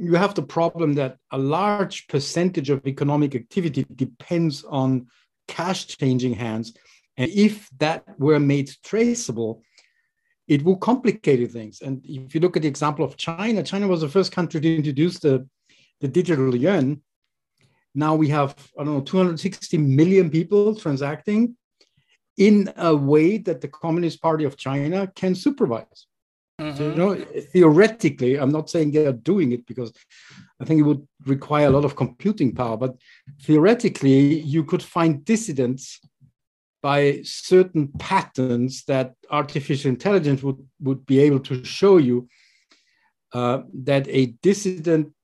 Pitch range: 135-180 Hz